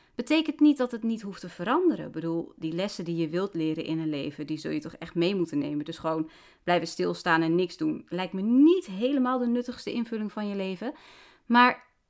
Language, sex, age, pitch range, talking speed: Dutch, female, 30-49, 190-275 Hz, 225 wpm